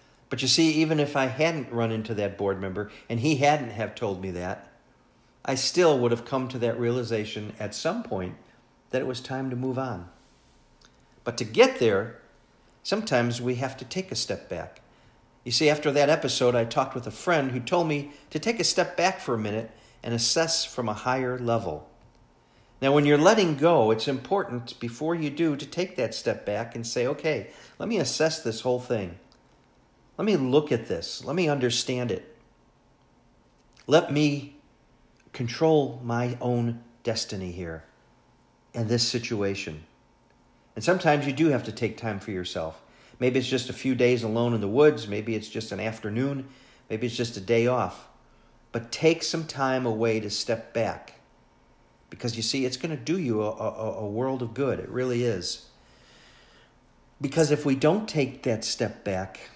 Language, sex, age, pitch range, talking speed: English, male, 50-69, 115-145 Hz, 185 wpm